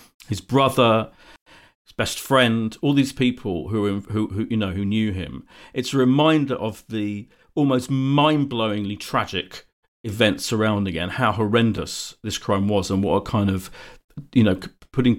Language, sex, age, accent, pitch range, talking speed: English, male, 40-59, British, 105-140 Hz, 155 wpm